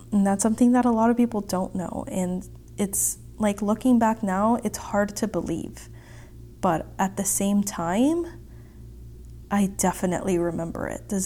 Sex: female